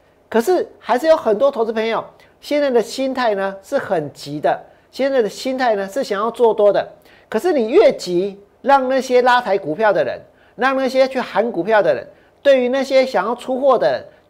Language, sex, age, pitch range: Chinese, male, 40-59, 200-265 Hz